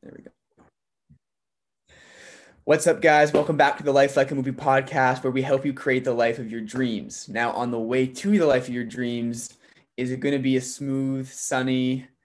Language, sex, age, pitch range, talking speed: English, male, 20-39, 120-140 Hz, 210 wpm